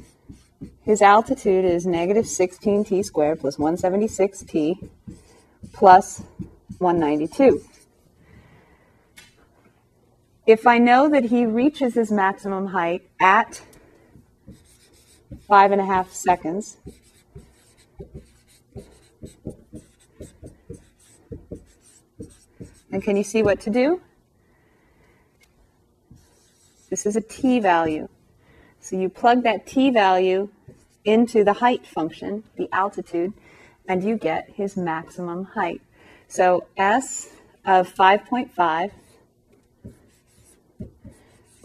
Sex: female